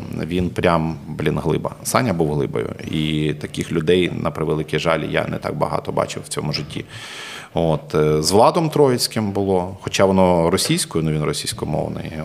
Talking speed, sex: 155 wpm, male